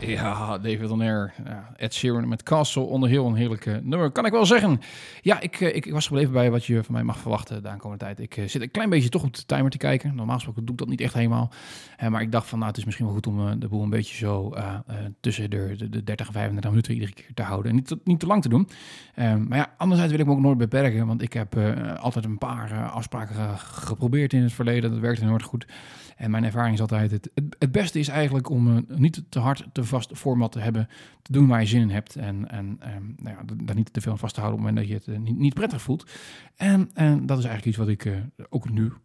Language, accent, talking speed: Dutch, Dutch, 270 wpm